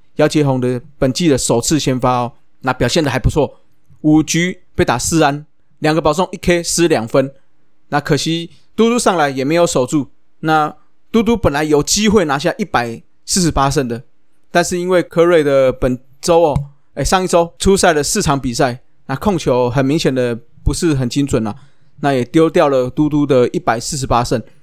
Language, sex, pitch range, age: Chinese, male, 135-175 Hz, 20-39